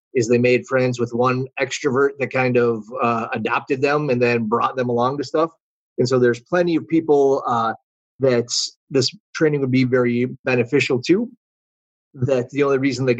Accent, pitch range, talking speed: American, 120-135 Hz, 180 wpm